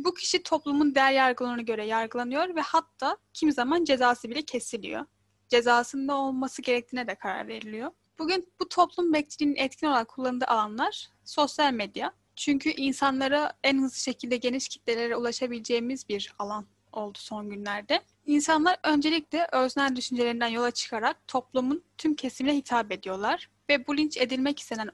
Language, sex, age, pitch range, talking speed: Turkish, female, 10-29, 235-290 Hz, 140 wpm